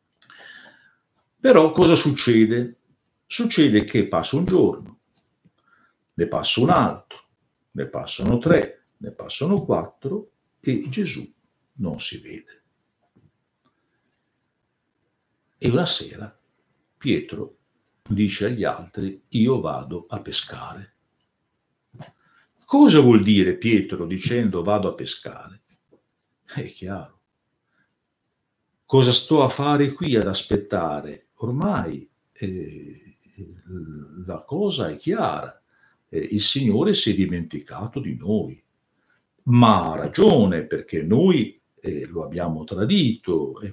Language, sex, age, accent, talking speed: Italian, male, 60-79, native, 105 wpm